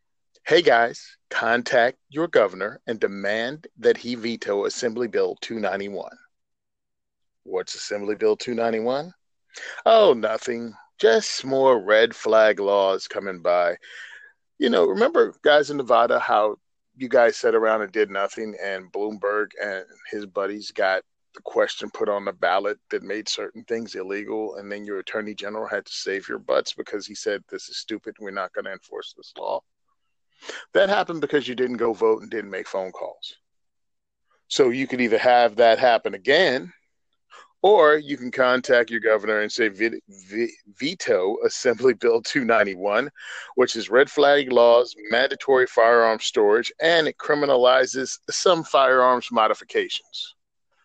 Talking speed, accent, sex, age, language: 150 wpm, American, male, 40-59, English